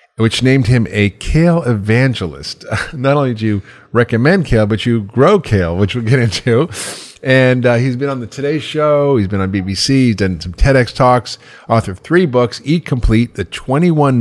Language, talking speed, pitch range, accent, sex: English, 190 wpm, 100-130 Hz, American, male